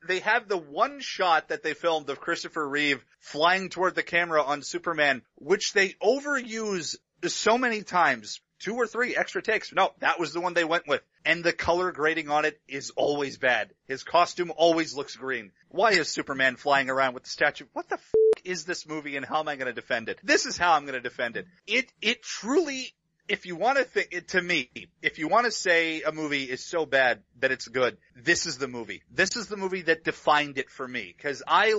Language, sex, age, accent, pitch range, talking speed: English, male, 30-49, American, 135-185 Hz, 220 wpm